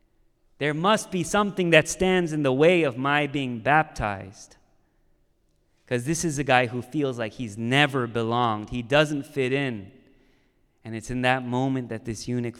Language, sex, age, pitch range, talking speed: English, male, 30-49, 105-130 Hz, 170 wpm